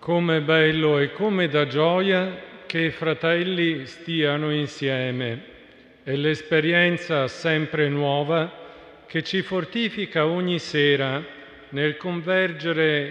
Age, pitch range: 50-69, 140-175 Hz